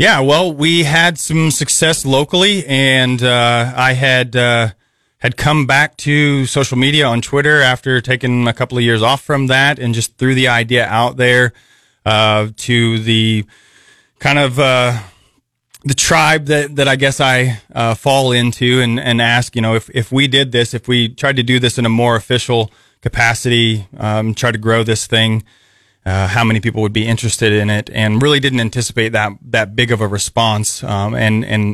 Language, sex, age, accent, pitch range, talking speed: English, male, 30-49, American, 110-130 Hz, 190 wpm